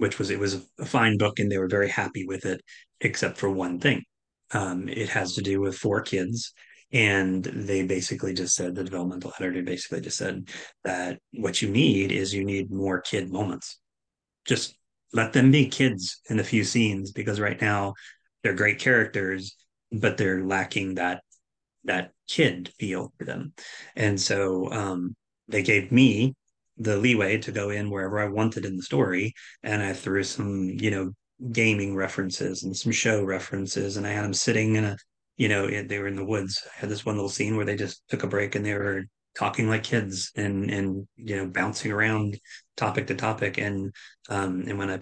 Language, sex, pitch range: English, male, 95-110 Hz